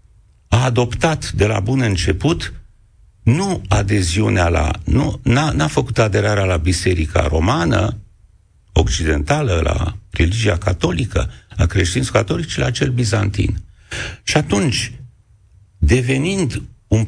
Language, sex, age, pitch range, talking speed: Romanian, male, 60-79, 90-120 Hz, 110 wpm